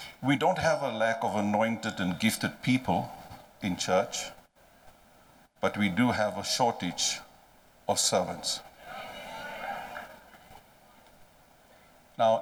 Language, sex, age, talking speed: English, male, 50-69, 100 wpm